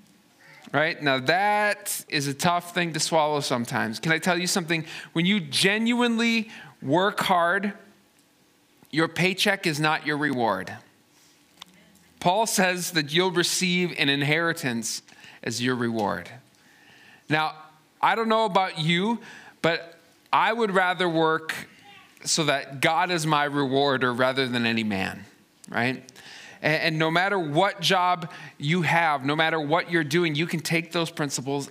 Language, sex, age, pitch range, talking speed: English, male, 40-59, 140-175 Hz, 140 wpm